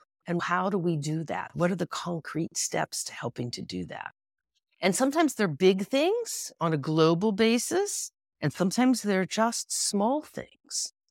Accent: American